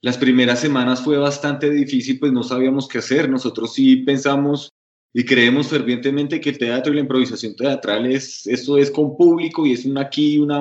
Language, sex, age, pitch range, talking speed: Spanish, male, 20-39, 125-150 Hz, 190 wpm